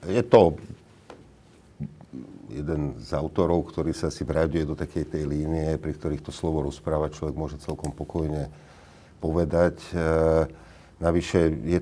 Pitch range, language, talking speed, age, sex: 75-85 Hz, Slovak, 130 wpm, 50-69, male